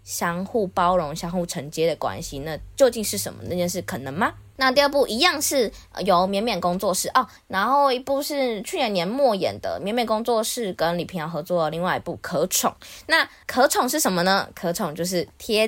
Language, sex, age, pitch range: Chinese, female, 20-39, 170-225 Hz